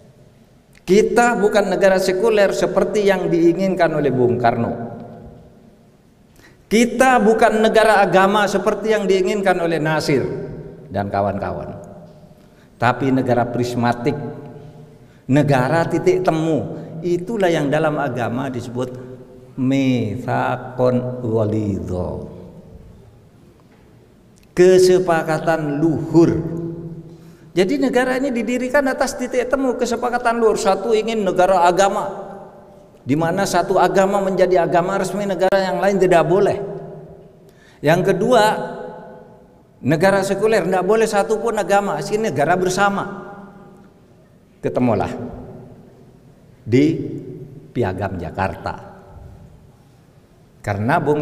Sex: male